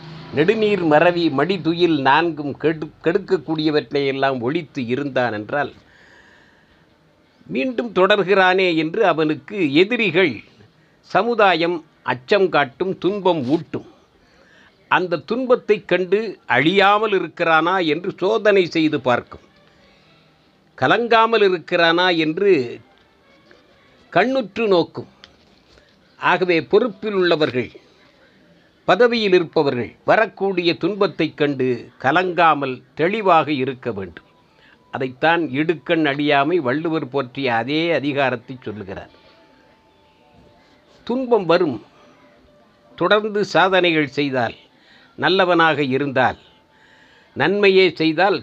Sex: male